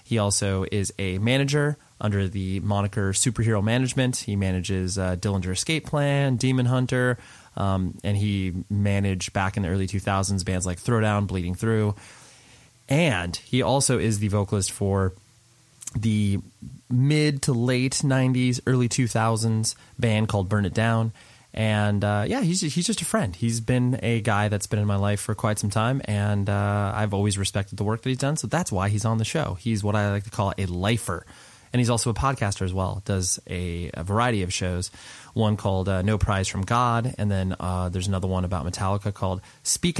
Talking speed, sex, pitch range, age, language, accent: 190 wpm, male, 95-125 Hz, 20-39, English, American